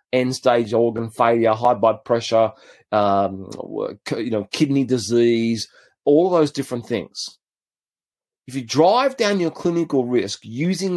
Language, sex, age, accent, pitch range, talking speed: English, male, 30-49, Australian, 120-165 Hz, 130 wpm